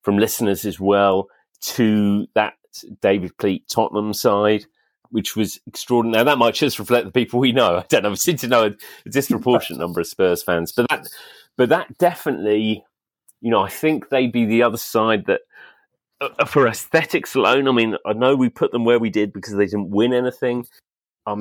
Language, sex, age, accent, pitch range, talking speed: English, male, 30-49, British, 100-145 Hz, 195 wpm